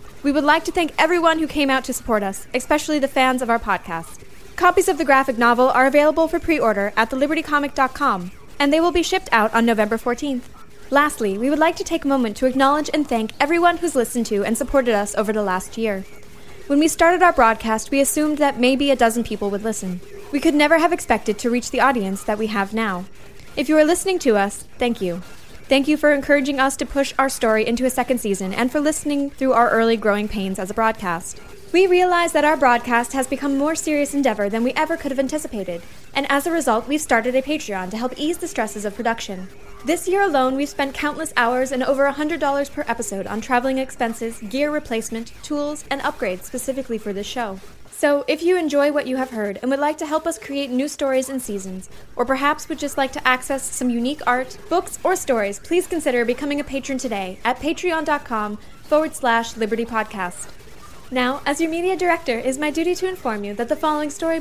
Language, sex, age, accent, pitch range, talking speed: English, female, 10-29, American, 230-300 Hz, 220 wpm